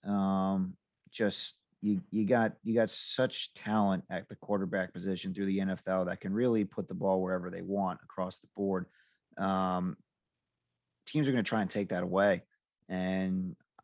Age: 30-49